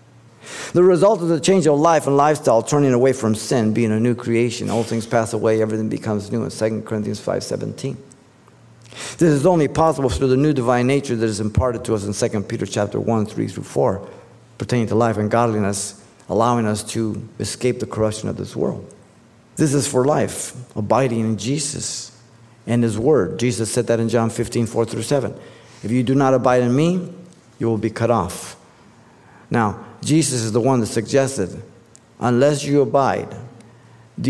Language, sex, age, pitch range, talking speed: English, male, 50-69, 110-140 Hz, 185 wpm